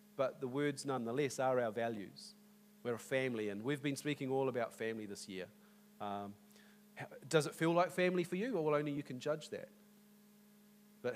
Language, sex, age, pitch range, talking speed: English, male, 40-59, 125-210 Hz, 185 wpm